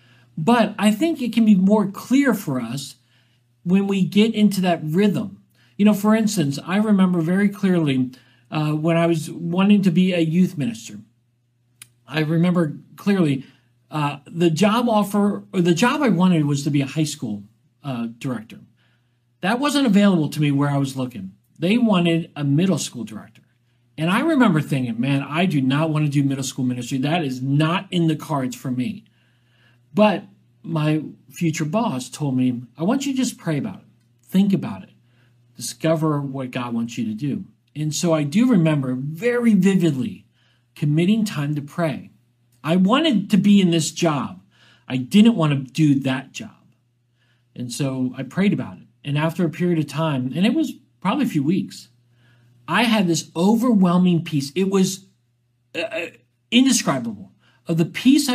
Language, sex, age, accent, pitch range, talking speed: English, male, 50-69, American, 125-195 Hz, 175 wpm